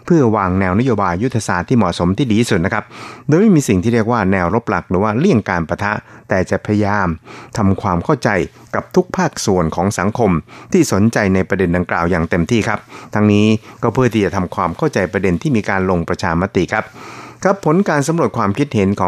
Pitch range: 95-115 Hz